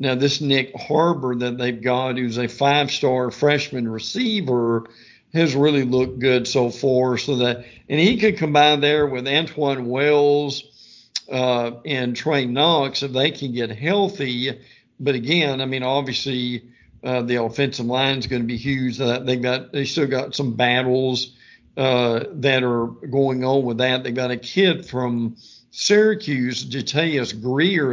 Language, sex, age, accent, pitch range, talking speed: English, male, 50-69, American, 125-150 Hz, 160 wpm